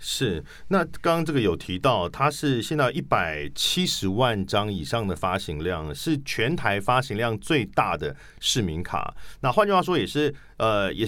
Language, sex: Chinese, male